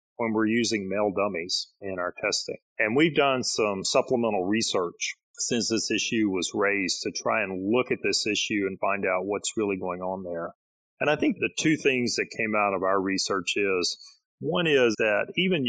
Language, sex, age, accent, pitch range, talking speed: English, male, 40-59, American, 95-125 Hz, 195 wpm